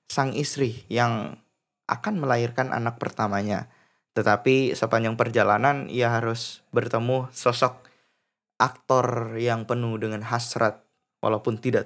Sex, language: male, Indonesian